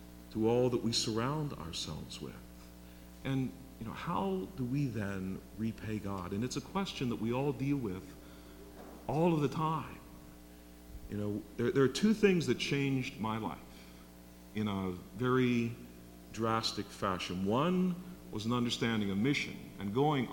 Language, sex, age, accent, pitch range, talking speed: English, male, 50-69, American, 90-130 Hz, 155 wpm